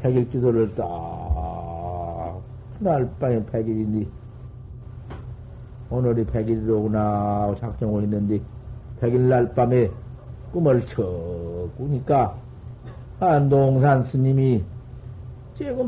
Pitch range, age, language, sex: 110-130 Hz, 50-69, Korean, male